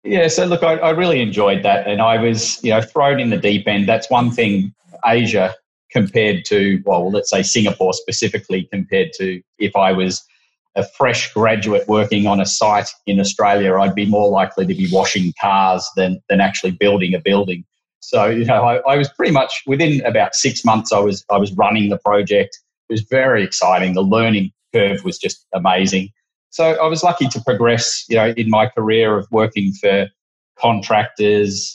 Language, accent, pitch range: English, Australian, 95-115 Hz